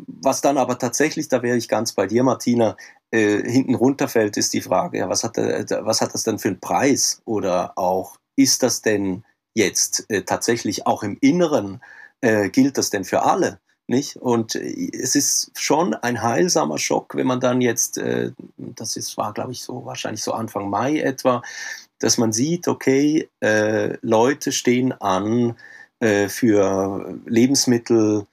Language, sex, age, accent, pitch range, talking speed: German, male, 40-59, German, 110-130 Hz, 170 wpm